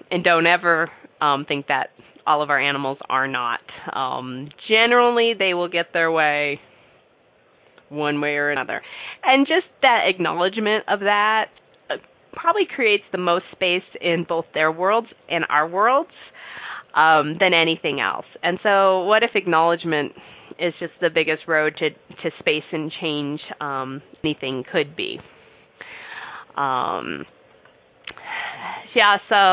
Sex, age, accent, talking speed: female, 30-49, American, 135 wpm